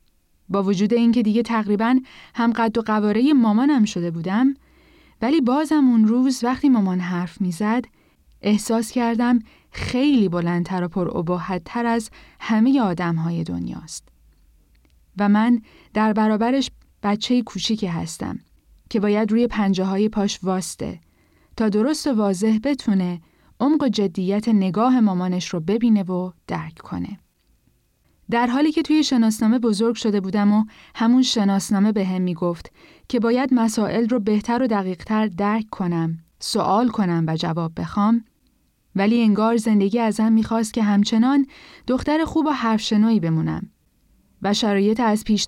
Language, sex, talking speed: Persian, female, 140 wpm